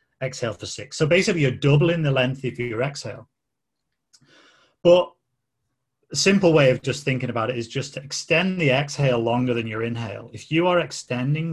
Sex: male